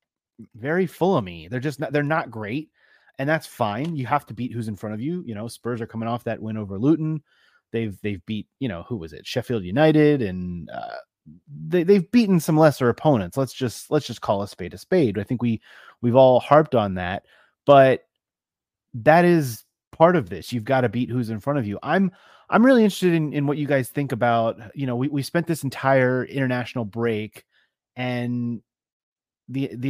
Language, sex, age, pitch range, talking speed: English, male, 30-49, 115-150 Hz, 210 wpm